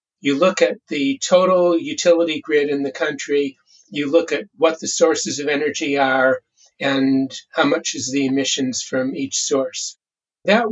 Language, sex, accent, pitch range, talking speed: English, male, American, 140-180 Hz, 160 wpm